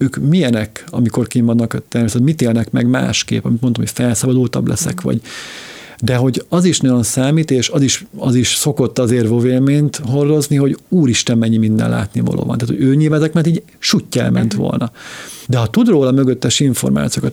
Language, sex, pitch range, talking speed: Hungarian, male, 120-150 Hz, 180 wpm